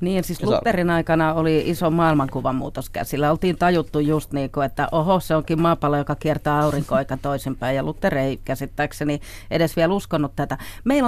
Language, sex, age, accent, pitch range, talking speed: Finnish, female, 40-59, native, 145-200 Hz, 180 wpm